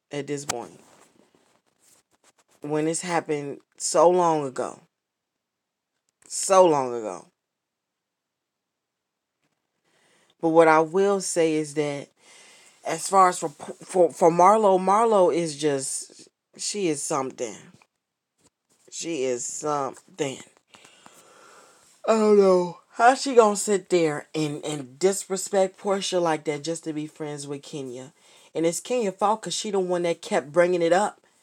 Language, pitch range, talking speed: English, 160-205 Hz, 130 wpm